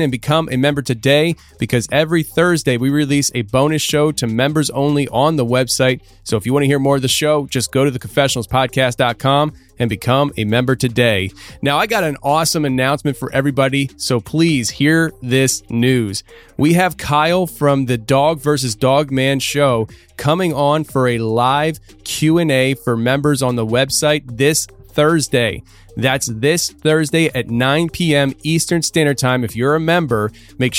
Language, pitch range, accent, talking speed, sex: English, 125-155 Hz, American, 170 wpm, male